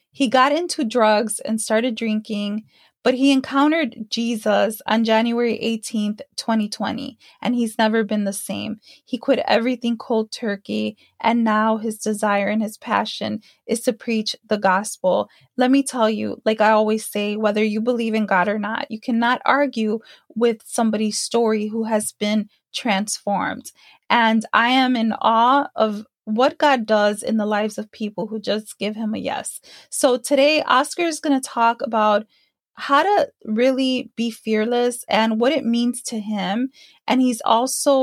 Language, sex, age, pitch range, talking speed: English, female, 20-39, 215-255 Hz, 165 wpm